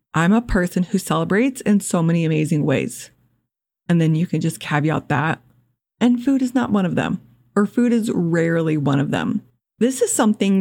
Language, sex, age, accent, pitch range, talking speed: English, female, 20-39, American, 155-195 Hz, 190 wpm